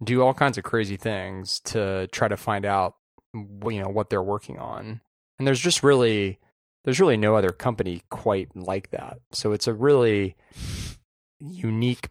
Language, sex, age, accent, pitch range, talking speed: English, male, 20-39, American, 95-125 Hz, 170 wpm